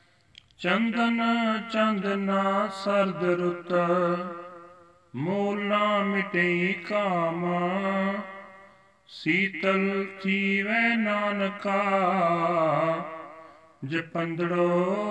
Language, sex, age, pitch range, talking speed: Punjabi, male, 50-69, 170-195 Hz, 50 wpm